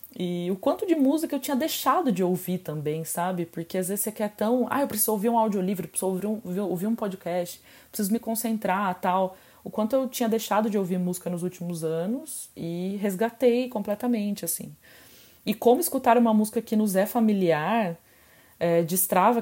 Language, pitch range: Portuguese, 165-215 Hz